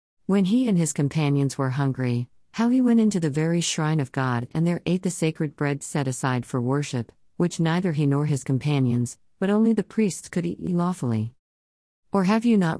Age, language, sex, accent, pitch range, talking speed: 50-69, English, female, American, 130-175 Hz, 200 wpm